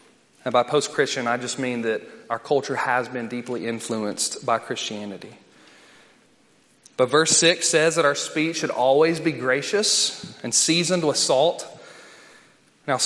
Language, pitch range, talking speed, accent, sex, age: English, 125-160 Hz, 145 wpm, American, male, 30-49